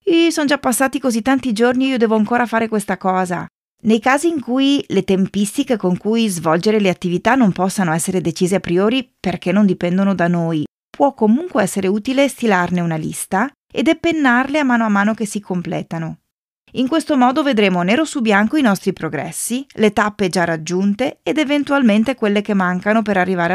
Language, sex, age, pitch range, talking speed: Italian, female, 30-49, 180-235 Hz, 185 wpm